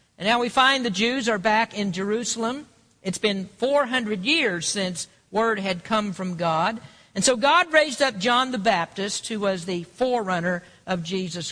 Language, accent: English, American